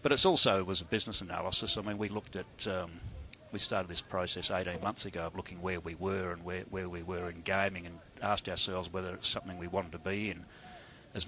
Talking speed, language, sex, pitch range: 240 wpm, English, male, 95-110 Hz